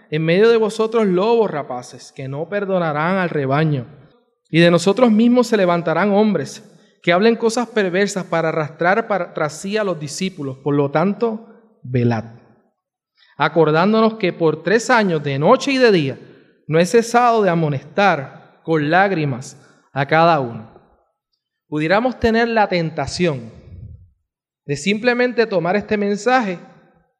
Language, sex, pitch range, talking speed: Spanish, male, 145-215 Hz, 135 wpm